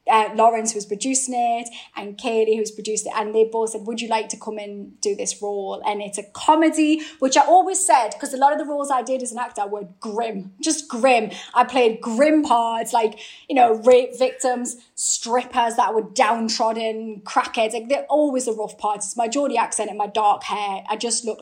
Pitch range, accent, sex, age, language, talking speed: 215-265 Hz, British, female, 20-39, English, 215 wpm